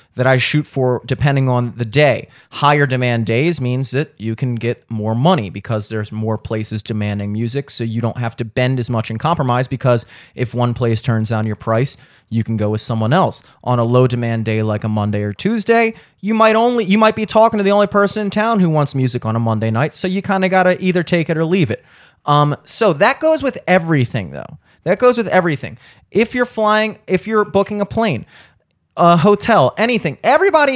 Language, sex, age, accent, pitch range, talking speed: English, male, 30-49, American, 125-200 Hz, 220 wpm